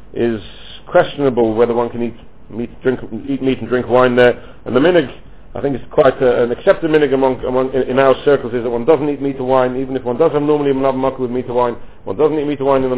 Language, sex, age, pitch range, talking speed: English, male, 50-69, 120-145 Hz, 275 wpm